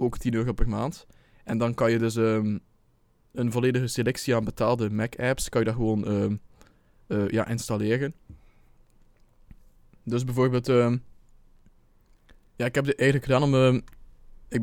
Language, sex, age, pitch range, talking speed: Dutch, male, 20-39, 105-125 Hz, 150 wpm